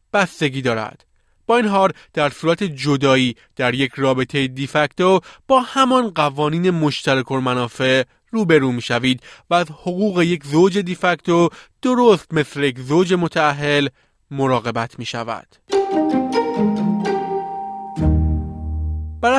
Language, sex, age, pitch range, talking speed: Persian, male, 30-49, 130-185 Hz, 110 wpm